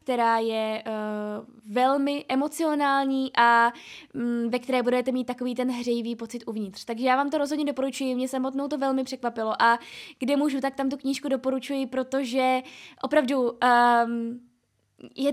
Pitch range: 235-290 Hz